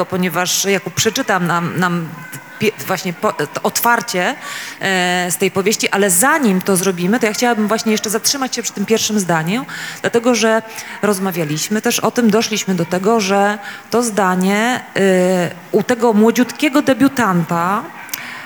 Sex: female